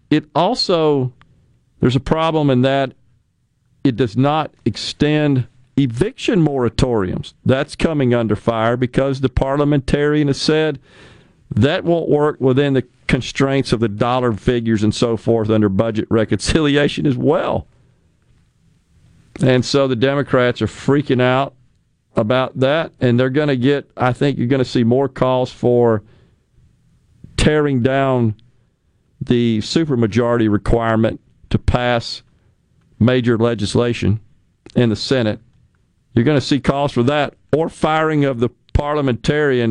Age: 50-69